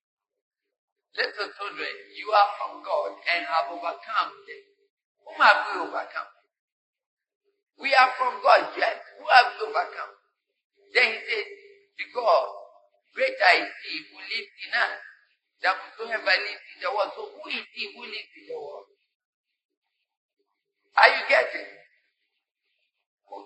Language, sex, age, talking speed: English, male, 50-69, 135 wpm